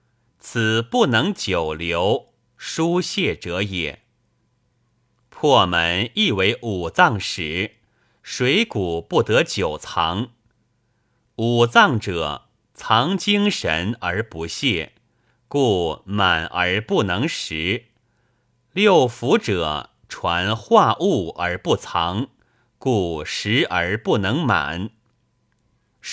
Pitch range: 95-125 Hz